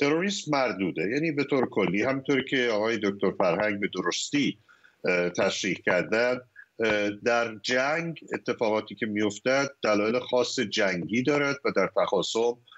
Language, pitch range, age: Persian, 100-145 Hz, 50-69